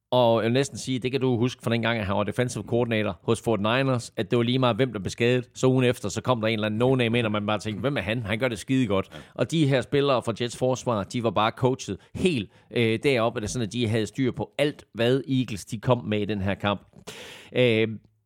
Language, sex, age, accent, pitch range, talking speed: Danish, male, 30-49, native, 105-135 Hz, 275 wpm